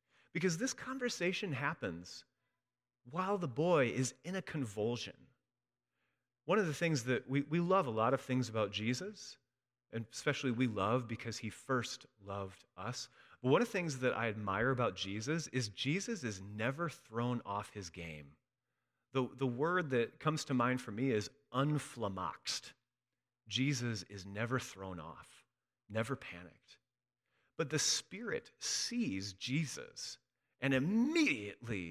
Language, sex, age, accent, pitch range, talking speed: English, male, 30-49, American, 115-155 Hz, 145 wpm